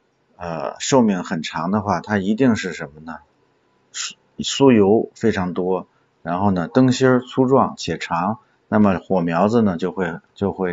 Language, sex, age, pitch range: Chinese, male, 50-69, 95-125 Hz